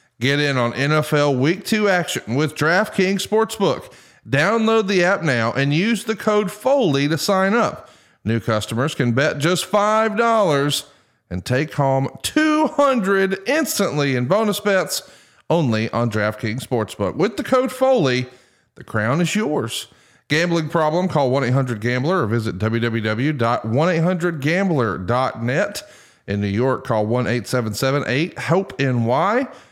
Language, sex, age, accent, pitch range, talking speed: English, male, 40-59, American, 125-190 Hz, 120 wpm